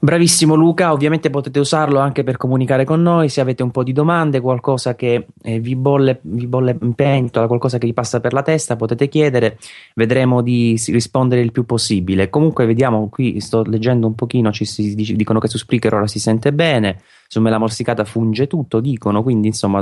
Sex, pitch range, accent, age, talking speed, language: male, 105-125 Hz, native, 20-39, 195 wpm, Italian